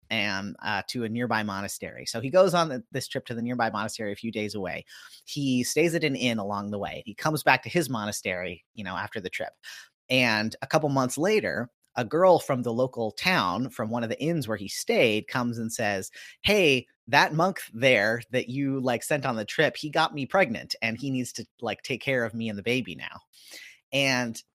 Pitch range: 110-145 Hz